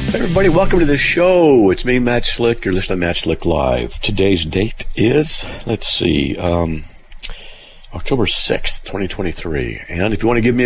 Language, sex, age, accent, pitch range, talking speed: English, male, 50-69, American, 80-115 Hz, 180 wpm